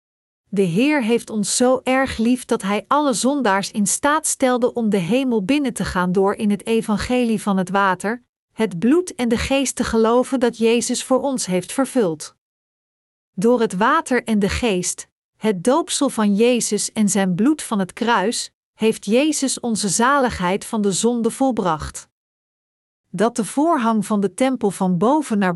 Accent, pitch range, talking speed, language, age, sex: Dutch, 200-255 Hz, 170 wpm, Dutch, 50-69, female